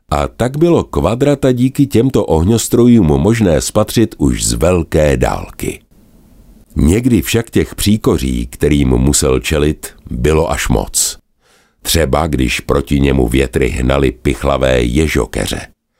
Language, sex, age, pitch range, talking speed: Czech, male, 60-79, 70-105 Hz, 115 wpm